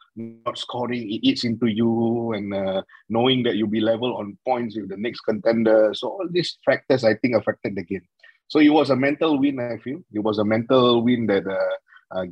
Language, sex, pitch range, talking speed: English, male, 105-130 Hz, 215 wpm